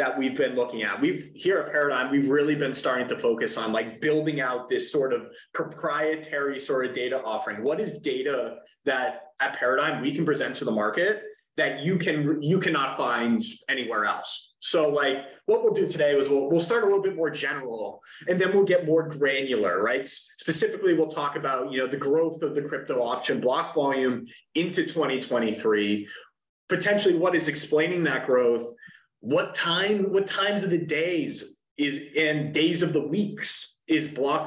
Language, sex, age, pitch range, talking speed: English, male, 30-49, 140-195 Hz, 185 wpm